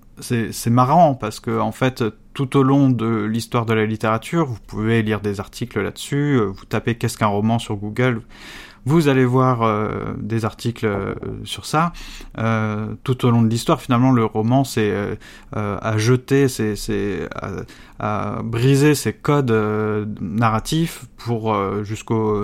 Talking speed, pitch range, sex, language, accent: 155 wpm, 105-130 Hz, male, French, French